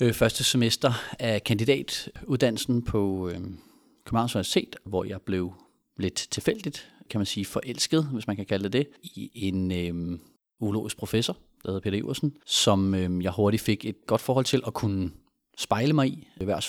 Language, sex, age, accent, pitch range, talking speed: Danish, male, 30-49, native, 100-125 Hz, 160 wpm